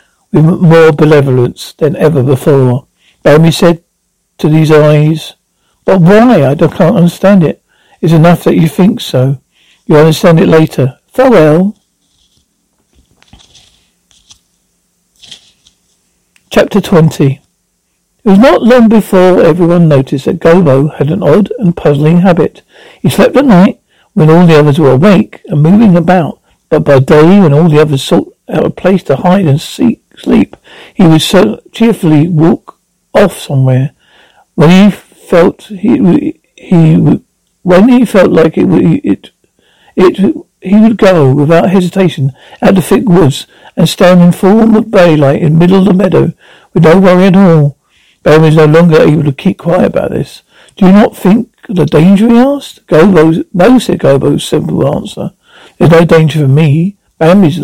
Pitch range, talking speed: 155-195 Hz, 155 wpm